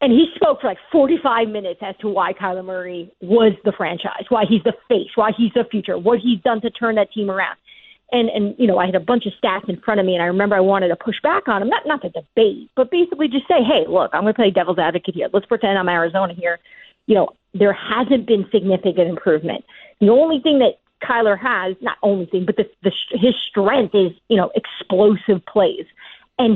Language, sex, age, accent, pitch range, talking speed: English, female, 40-59, American, 195-260 Hz, 235 wpm